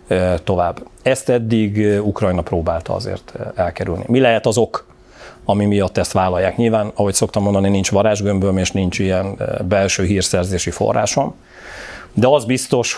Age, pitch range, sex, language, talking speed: 40-59, 95-105 Hz, male, Hungarian, 140 wpm